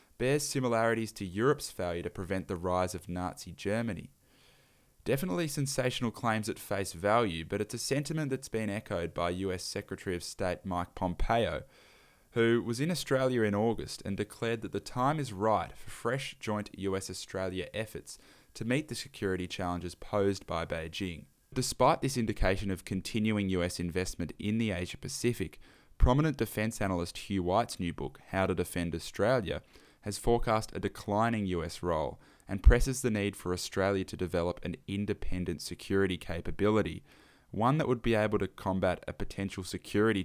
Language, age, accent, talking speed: English, 20-39, Australian, 160 wpm